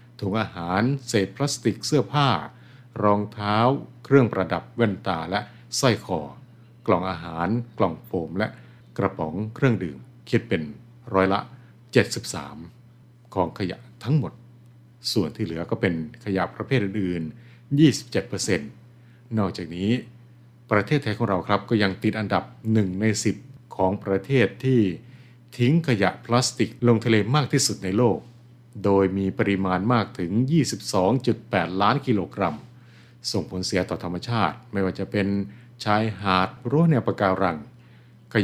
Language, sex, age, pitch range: Thai, male, 60-79, 95-120 Hz